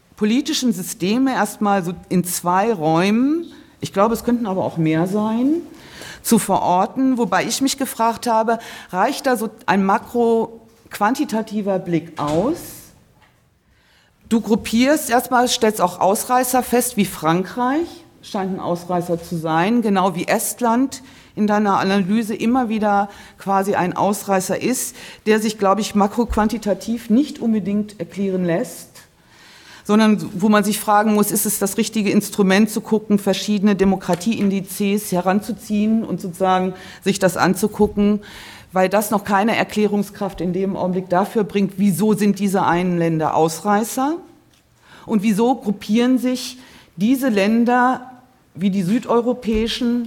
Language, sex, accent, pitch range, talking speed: German, female, German, 190-235 Hz, 130 wpm